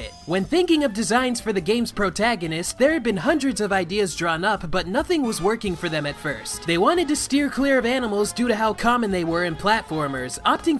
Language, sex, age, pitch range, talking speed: English, male, 20-39, 180-255 Hz, 220 wpm